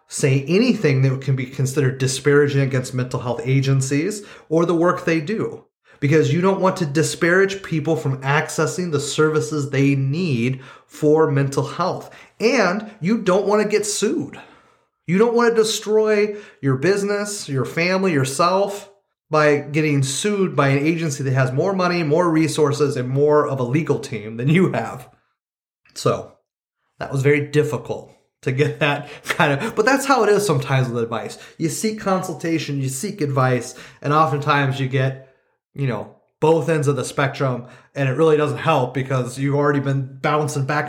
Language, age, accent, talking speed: English, 30-49, American, 170 wpm